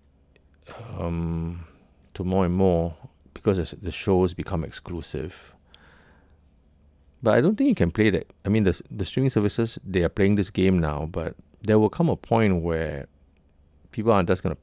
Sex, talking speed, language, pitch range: male, 170 wpm, English, 75-90 Hz